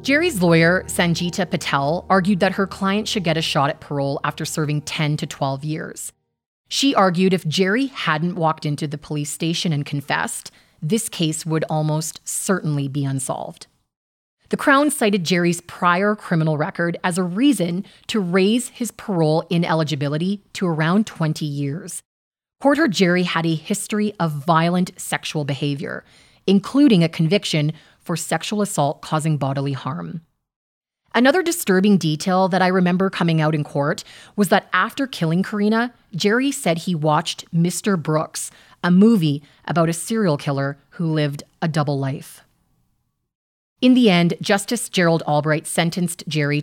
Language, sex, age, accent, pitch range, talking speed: English, female, 30-49, American, 155-200 Hz, 150 wpm